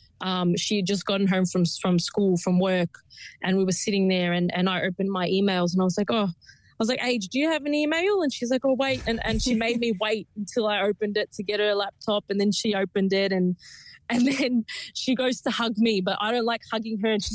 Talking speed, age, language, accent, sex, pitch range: 265 wpm, 20-39, English, Australian, female, 190-230 Hz